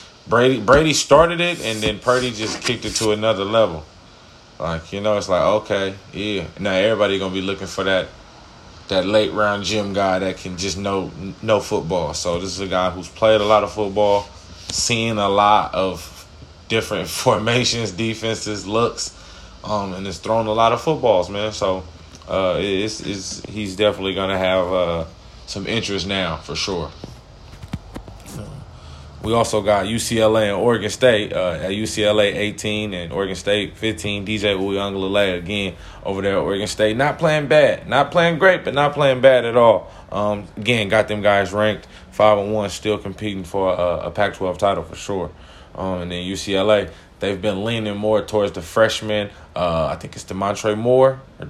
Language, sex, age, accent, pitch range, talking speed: English, male, 20-39, American, 90-110 Hz, 175 wpm